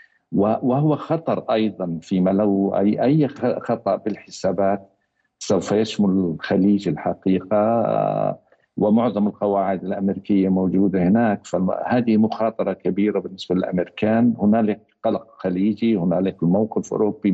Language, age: Arabic, 50-69